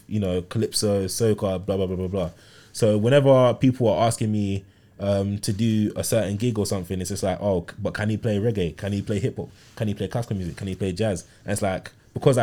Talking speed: 240 wpm